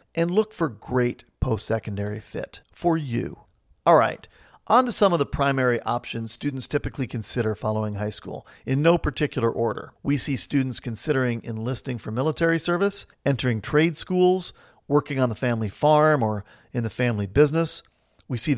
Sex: male